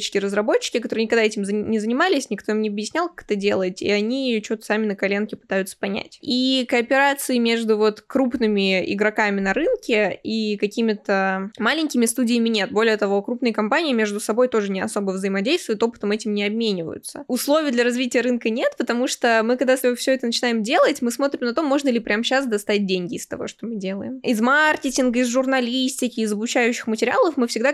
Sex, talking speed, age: female, 185 wpm, 20-39